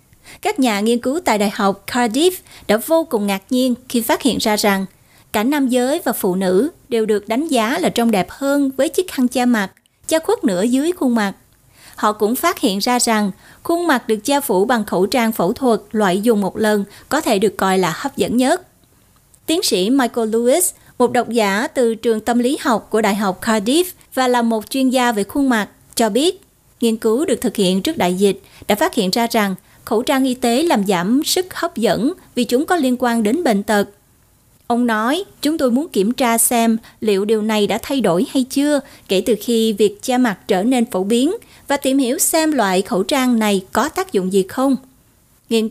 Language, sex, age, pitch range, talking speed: Vietnamese, female, 20-39, 210-265 Hz, 220 wpm